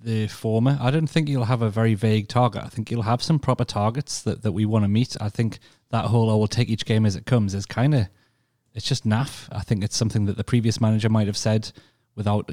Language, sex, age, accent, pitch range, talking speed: English, male, 30-49, British, 105-120 Hz, 265 wpm